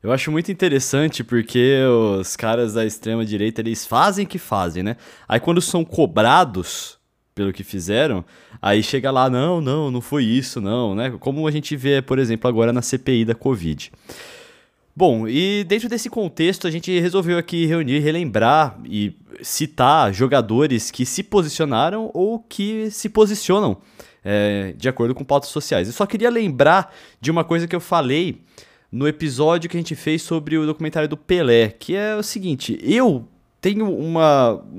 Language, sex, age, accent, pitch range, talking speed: Portuguese, male, 20-39, Brazilian, 125-170 Hz, 170 wpm